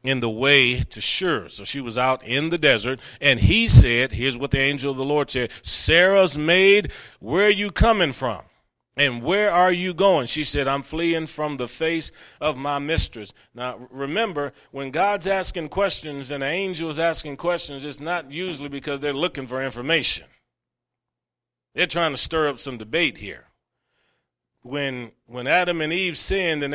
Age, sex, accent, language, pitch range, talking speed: 40-59, male, American, English, 125-160 Hz, 175 wpm